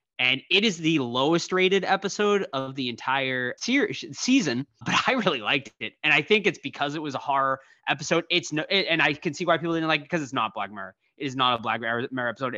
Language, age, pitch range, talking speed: English, 20-39, 125-165 Hz, 245 wpm